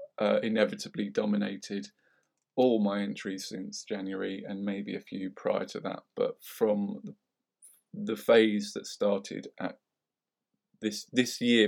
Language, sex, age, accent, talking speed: English, male, 20-39, British, 130 wpm